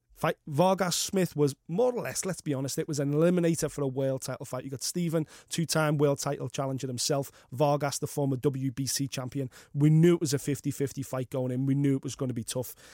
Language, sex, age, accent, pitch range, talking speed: English, male, 30-49, British, 135-165 Hz, 225 wpm